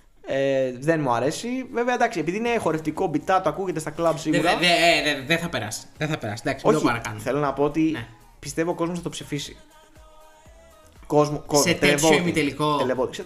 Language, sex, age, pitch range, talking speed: Greek, male, 20-39, 120-180 Hz, 160 wpm